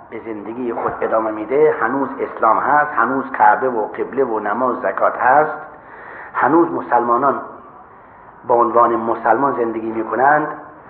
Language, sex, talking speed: Persian, male, 140 wpm